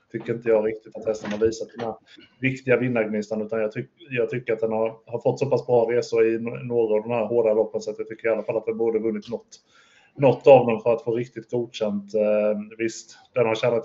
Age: 30-49